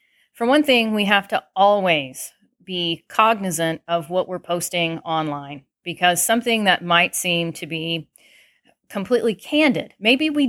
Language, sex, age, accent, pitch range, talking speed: English, female, 40-59, American, 175-230 Hz, 145 wpm